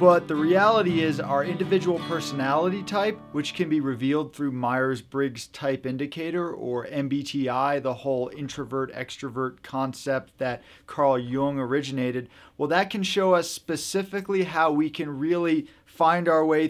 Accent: American